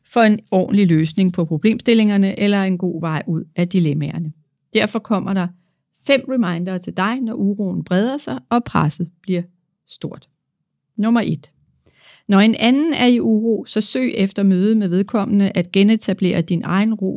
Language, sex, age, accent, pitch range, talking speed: Danish, female, 40-59, native, 170-225 Hz, 165 wpm